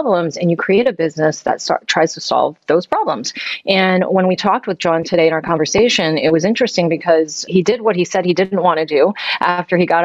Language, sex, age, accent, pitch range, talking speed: English, female, 30-49, American, 155-185 Hz, 235 wpm